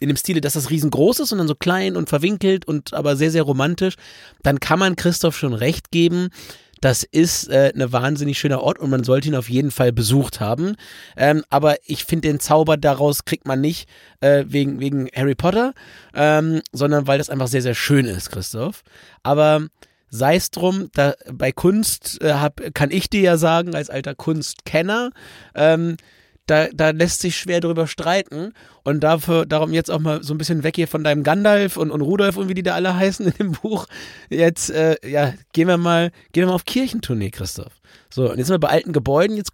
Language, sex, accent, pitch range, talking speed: German, male, German, 140-175 Hz, 210 wpm